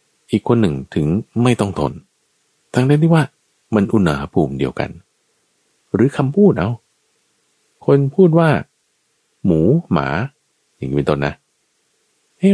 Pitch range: 80-130 Hz